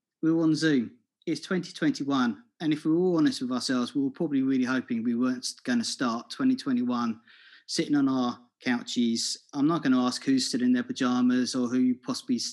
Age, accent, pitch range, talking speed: 30-49, British, 155-260 Hz, 180 wpm